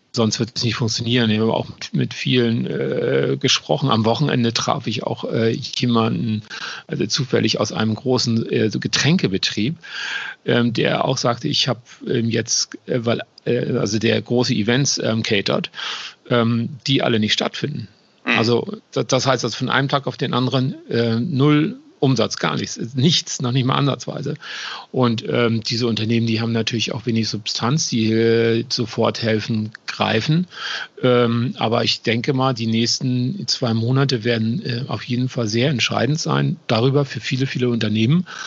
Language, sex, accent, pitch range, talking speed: German, male, German, 115-140 Hz, 165 wpm